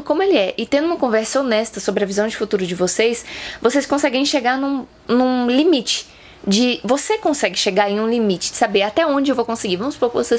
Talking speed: 225 wpm